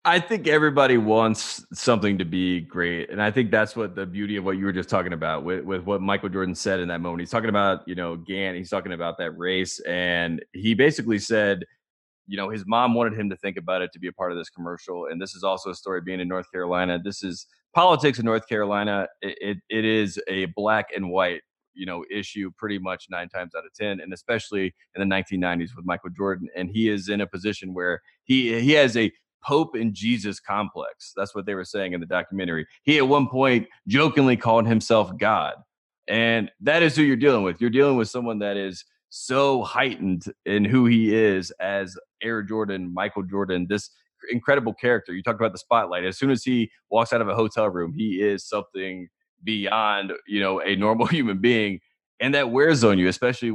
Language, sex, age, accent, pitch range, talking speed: English, male, 20-39, American, 95-115 Hz, 215 wpm